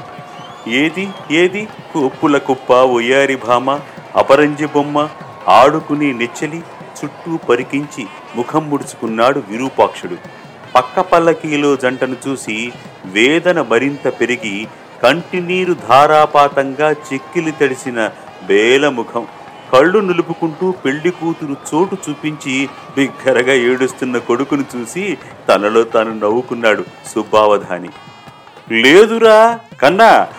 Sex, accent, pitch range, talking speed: male, native, 130-180 Hz, 85 wpm